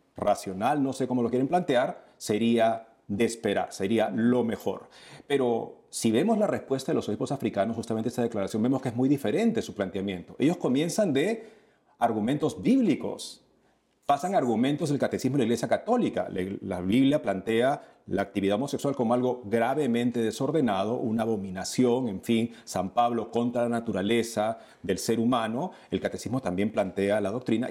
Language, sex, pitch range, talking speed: Spanish, male, 110-150 Hz, 160 wpm